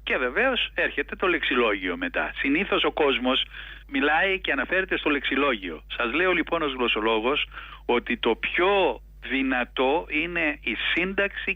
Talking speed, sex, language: 135 wpm, male, Greek